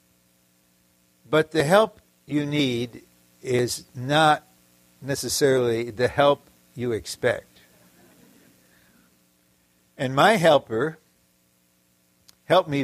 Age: 60-79